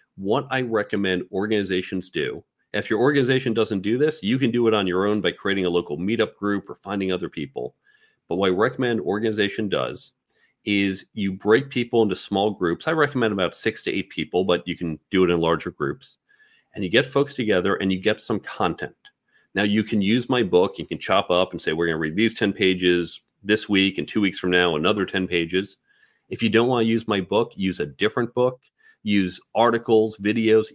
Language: English